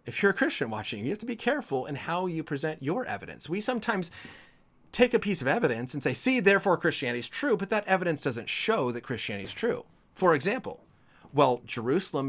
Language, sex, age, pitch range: English, male, 30-49, 135-190 Hz